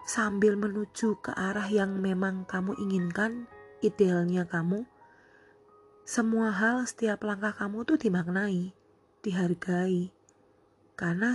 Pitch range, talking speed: 180-225 Hz, 100 wpm